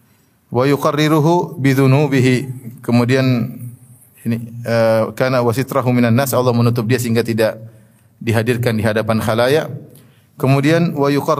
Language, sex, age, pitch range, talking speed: Indonesian, male, 30-49, 120-145 Hz, 105 wpm